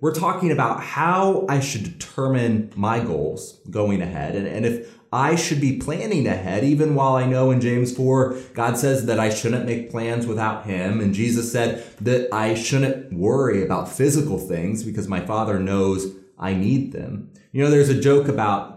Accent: American